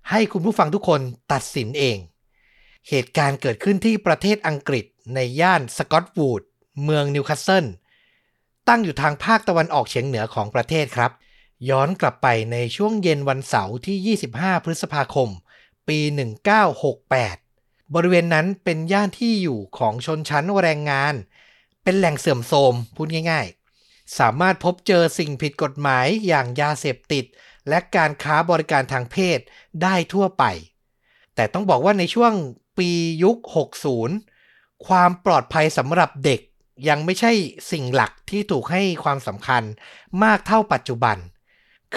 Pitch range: 135-190 Hz